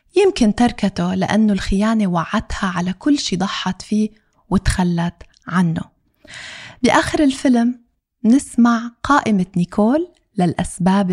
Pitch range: 185-240 Hz